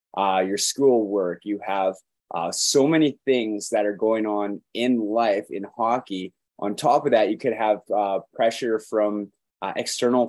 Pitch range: 100-120 Hz